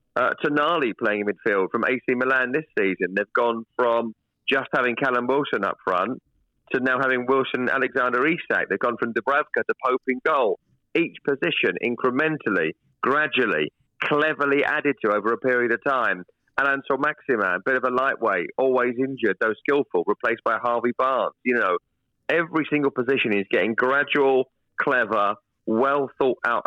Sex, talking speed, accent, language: male, 155 wpm, British, English